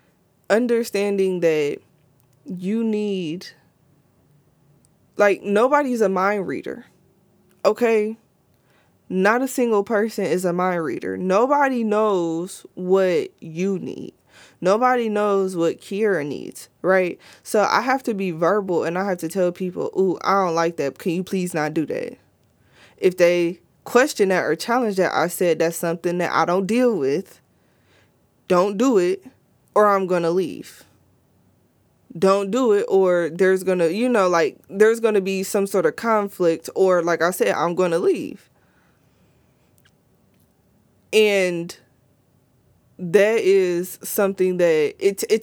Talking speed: 145 wpm